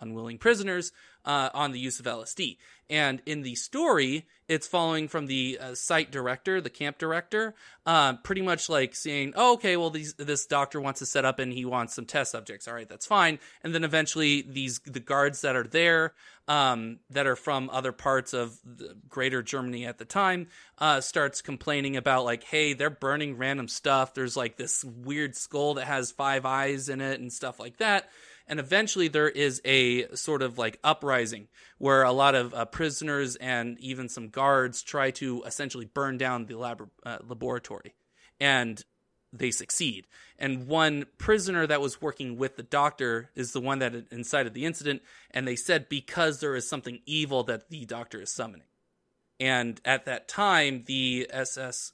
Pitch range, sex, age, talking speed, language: 125-150 Hz, male, 20-39, 185 wpm, English